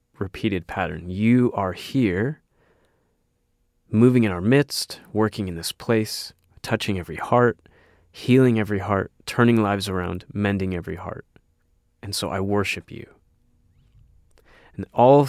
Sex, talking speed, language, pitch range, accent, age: male, 125 wpm, English, 95-115 Hz, American, 30-49